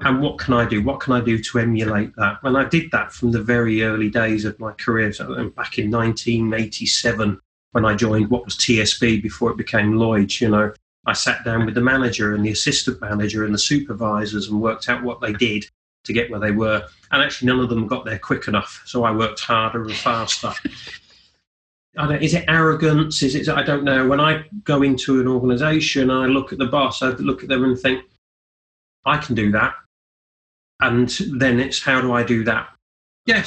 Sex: male